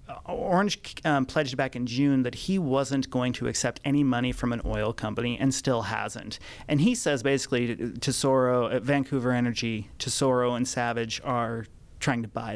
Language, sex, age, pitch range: English, male, 30-49, 115-135 Hz